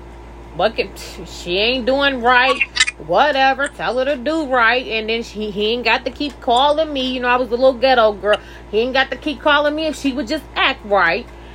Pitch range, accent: 170-255 Hz, American